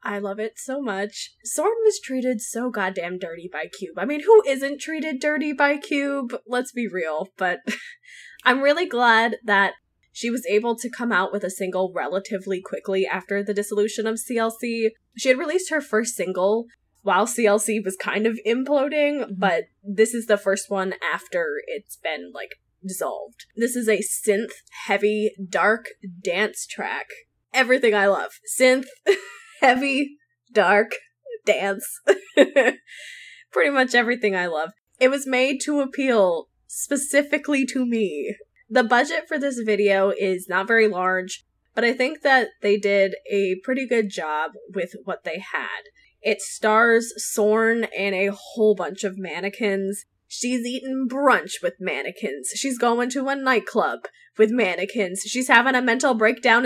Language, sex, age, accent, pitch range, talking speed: English, female, 10-29, American, 200-270 Hz, 150 wpm